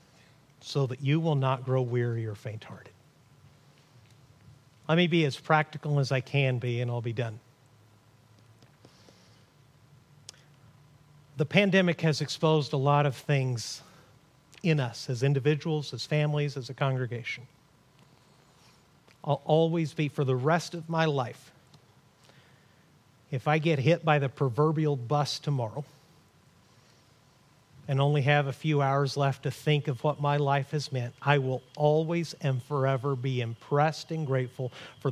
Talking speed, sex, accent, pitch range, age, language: 140 wpm, male, American, 130-150 Hz, 50-69, English